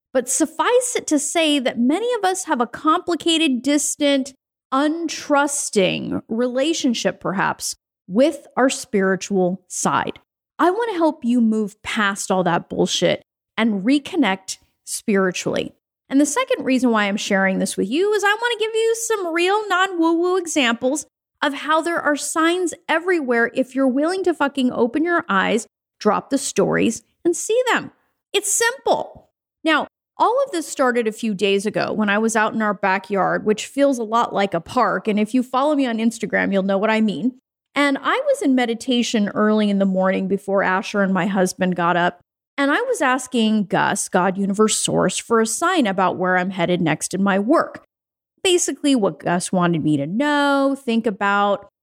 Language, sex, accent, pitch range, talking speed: English, female, American, 200-305 Hz, 180 wpm